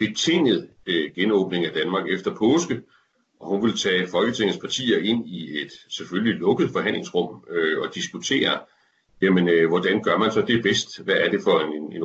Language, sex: Danish, male